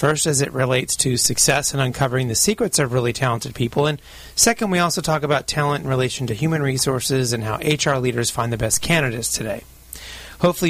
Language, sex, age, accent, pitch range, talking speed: English, male, 30-49, American, 125-150 Hz, 200 wpm